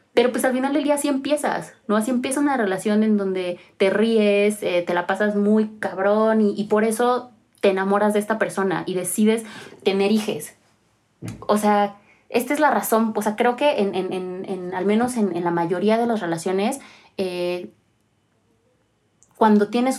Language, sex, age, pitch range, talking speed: Spanish, female, 30-49, 190-220 Hz, 175 wpm